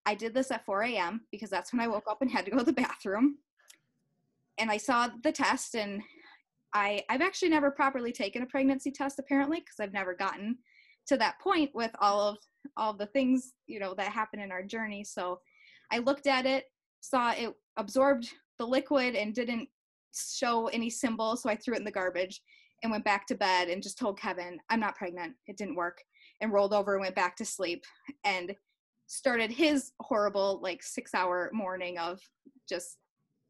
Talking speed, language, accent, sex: 195 wpm, English, American, female